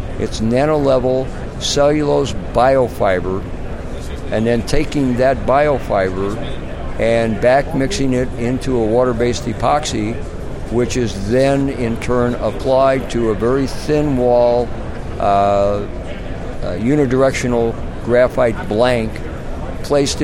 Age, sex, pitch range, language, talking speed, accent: 60-79, male, 100-120 Hz, English, 100 wpm, American